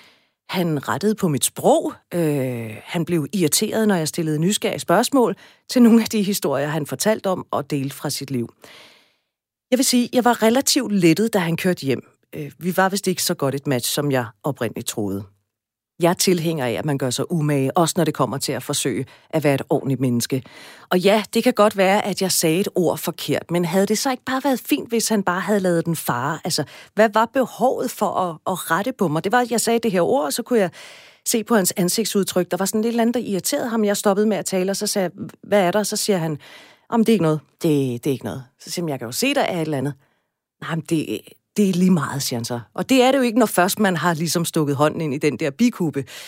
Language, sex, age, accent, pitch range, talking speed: Danish, female, 40-59, native, 145-205 Hz, 255 wpm